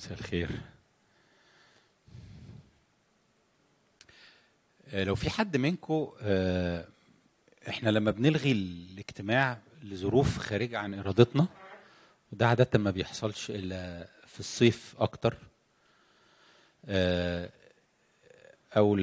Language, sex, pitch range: English, male, 100-125 Hz